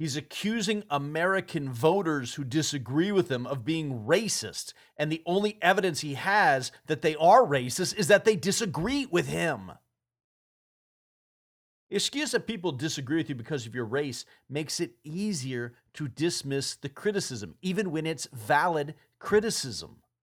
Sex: male